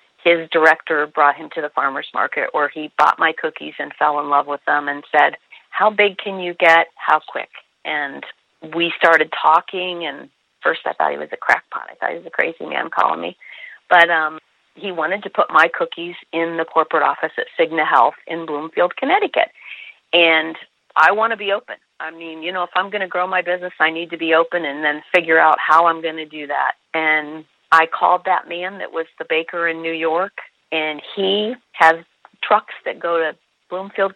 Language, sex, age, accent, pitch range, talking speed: English, female, 40-59, American, 160-185 Hz, 210 wpm